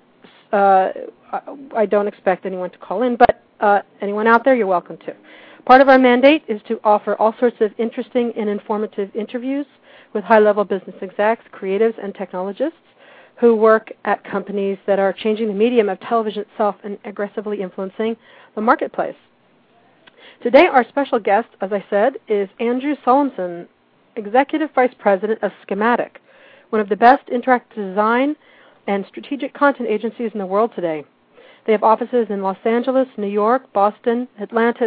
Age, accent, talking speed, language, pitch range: 40-59, American, 160 wpm, English, 200-245 Hz